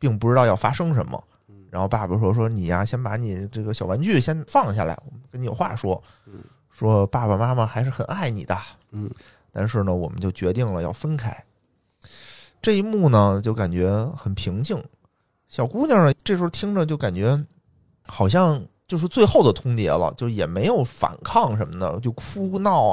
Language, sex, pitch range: Chinese, male, 105-140 Hz